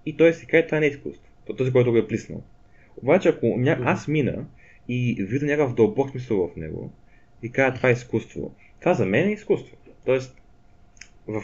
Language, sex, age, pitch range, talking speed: Bulgarian, male, 20-39, 115-150 Hz, 195 wpm